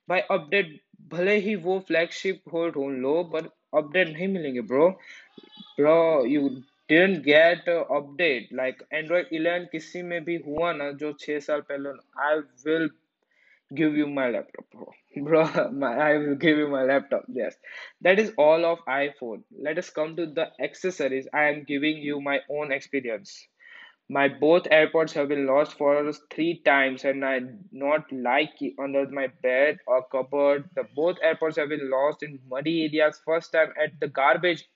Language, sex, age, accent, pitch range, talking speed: Hindi, male, 20-39, native, 140-170 Hz, 120 wpm